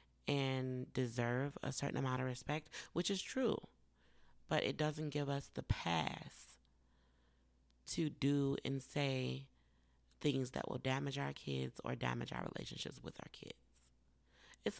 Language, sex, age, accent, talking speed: English, female, 30-49, American, 140 wpm